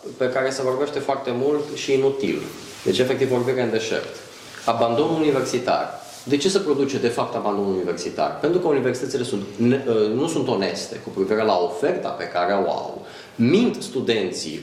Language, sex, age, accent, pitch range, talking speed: Romanian, male, 30-49, native, 105-150 Hz, 160 wpm